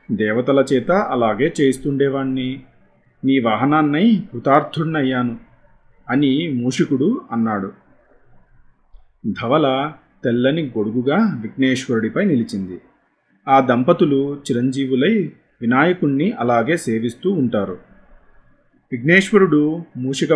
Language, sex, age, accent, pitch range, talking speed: Telugu, male, 30-49, native, 120-150 Hz, 75 wpm